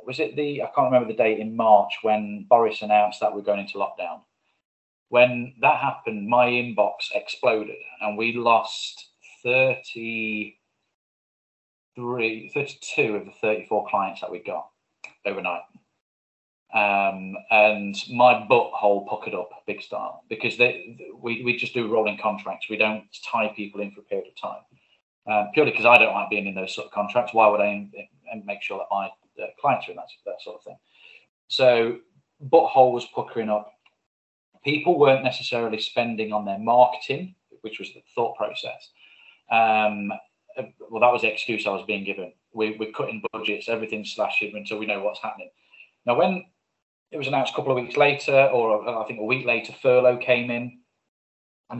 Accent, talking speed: British, 170 wpm